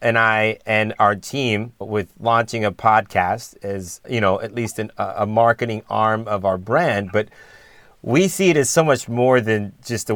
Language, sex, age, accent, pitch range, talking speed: English, male, 30-49, American, 105-120 Hz, 185 wpm